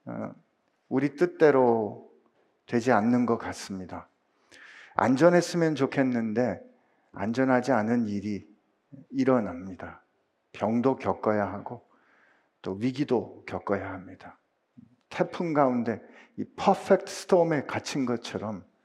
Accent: native